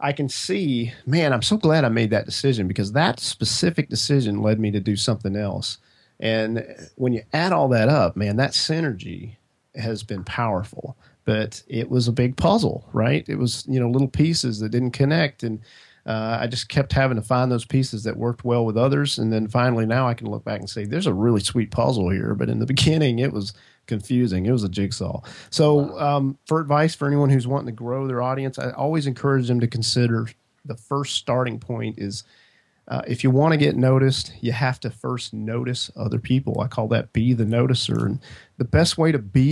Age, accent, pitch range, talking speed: 40-59, American, 110-135 Hz, 215 wpm